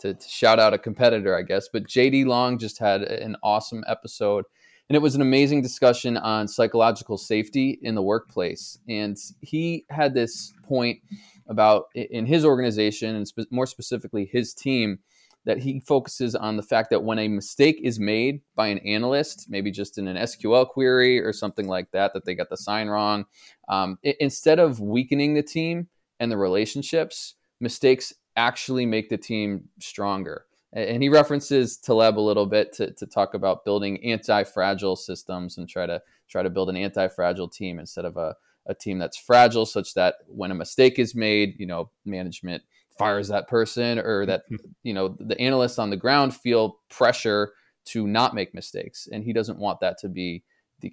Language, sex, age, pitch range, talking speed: English, male, 20-39, 100-130 Hz, 180 wpm